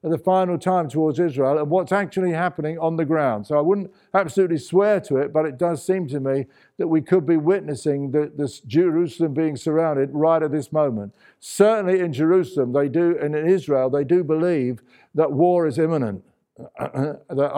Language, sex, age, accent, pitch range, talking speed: English, male, 60-79, British, 140-175 Hz, 190 wpm